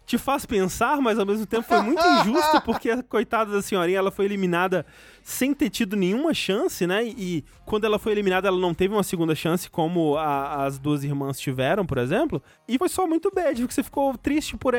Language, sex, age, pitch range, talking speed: Portuguese, male, 20-39, 150-205 Hz, 210 wpm